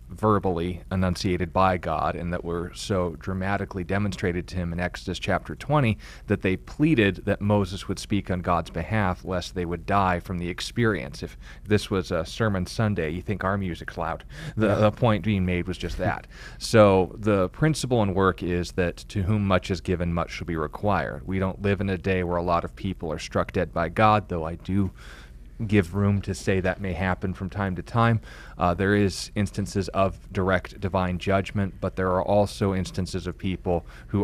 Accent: American